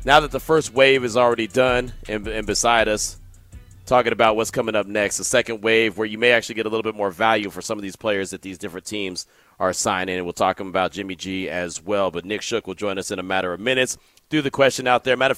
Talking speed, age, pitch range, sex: 260 wpm, 30-49, 95-130 Hz, male